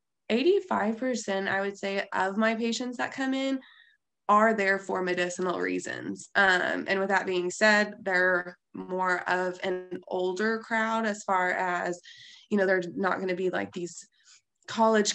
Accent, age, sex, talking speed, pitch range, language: American, 20-39, female, 155 wpm, 180-210 Hz, English